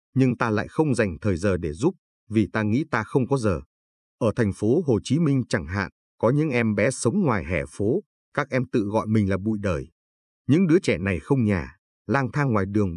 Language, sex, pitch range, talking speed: Vietnamese, male, 95-130 Hz, 230 wpm